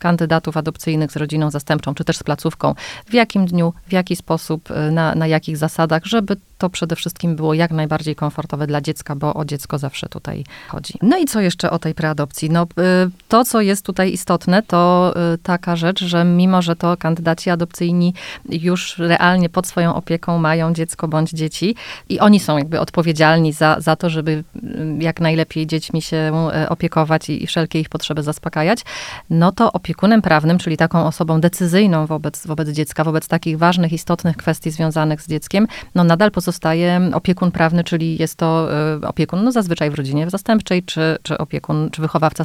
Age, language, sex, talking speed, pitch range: 30-49, Polish, female, 175 wpm, 160-180 Hz